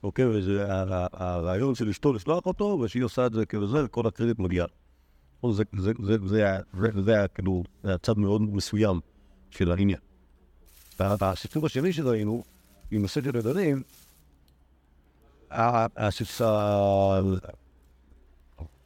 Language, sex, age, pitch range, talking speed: Hebrew, male, 50-69, 85-110 Hz, 95 wpm